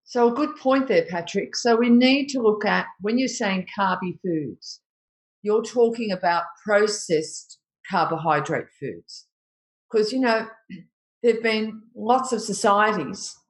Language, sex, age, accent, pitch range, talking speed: English, female, 50-69, Australian, 170-230 Hz, 140 wpm